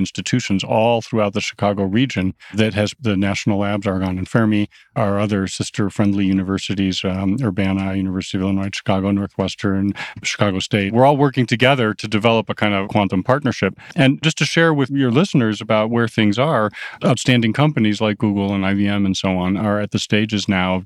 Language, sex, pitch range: English, male, 100-115 Hz